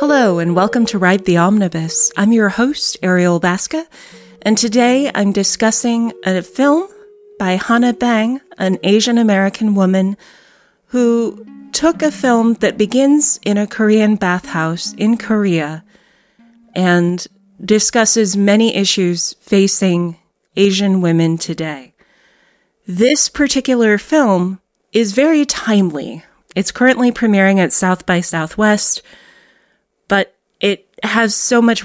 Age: 30-49